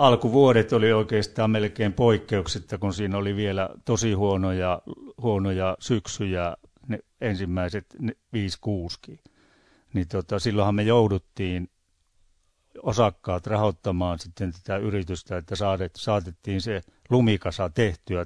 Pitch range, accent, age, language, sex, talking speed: 90-105 Hz, native, 60-79, Finnish, male, 100 wpm